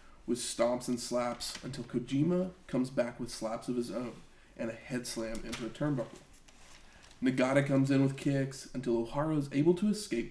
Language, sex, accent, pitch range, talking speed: English, male, American, 120-140 Hz, 180 wpm